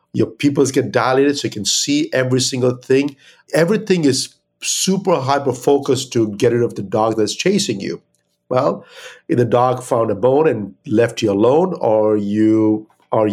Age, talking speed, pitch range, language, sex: 50-69, 175 wpm, 105-140 Hz, English, male